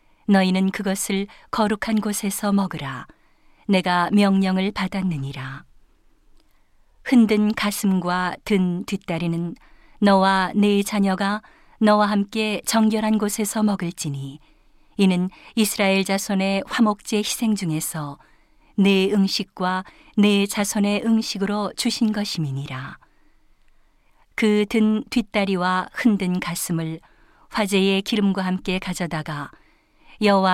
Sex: female